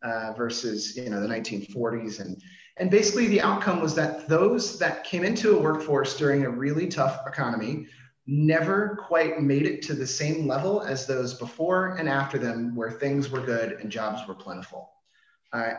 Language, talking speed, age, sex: English, 180 wpm, 30-49, male